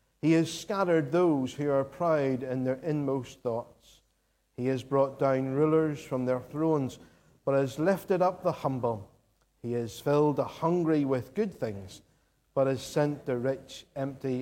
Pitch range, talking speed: 125-155 Hz, 160 wpm